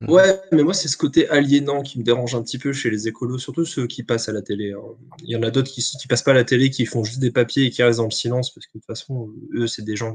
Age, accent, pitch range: 20-39, French, 120-150 Hz